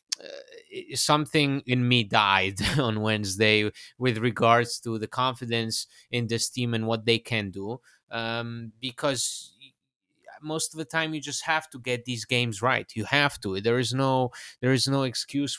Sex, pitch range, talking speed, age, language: male, 115-150 Hz, 170 wpm, 20-39, English